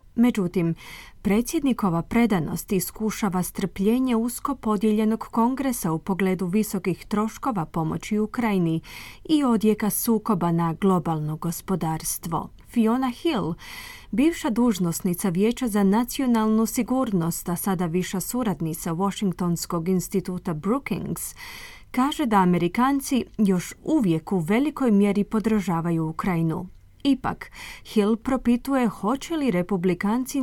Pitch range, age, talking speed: 185-230 Hz, 30-49, 100 wpm